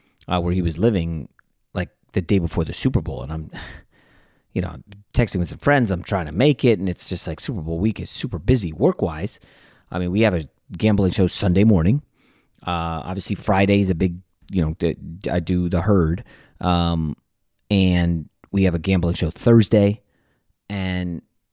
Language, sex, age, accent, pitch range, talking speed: English, male, 30-49, American, 90-120 Hz, 190 wpm